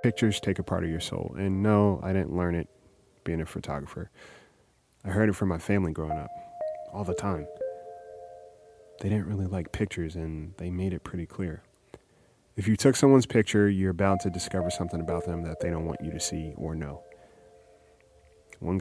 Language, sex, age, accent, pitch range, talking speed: English, male, 30-49, American, 85-100 Hz, 190 wpm